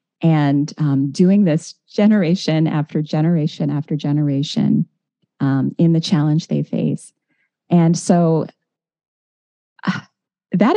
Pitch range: 150-195 Hz